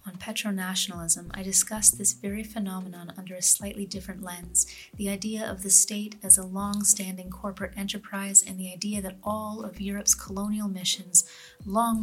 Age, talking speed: 30-49, 160 wpm